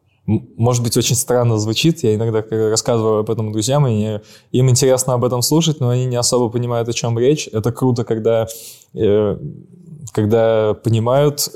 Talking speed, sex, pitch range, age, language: 155 wpm, male, 105-125 Hz, 20-39, Russian